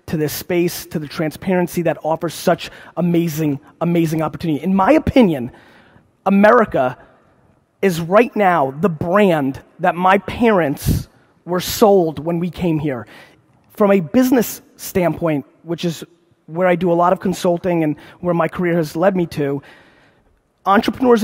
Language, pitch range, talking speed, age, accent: English, 165-205 Hz, 145 wpm, 30-49, American